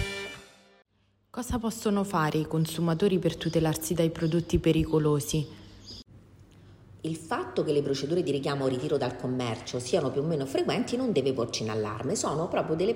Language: Italian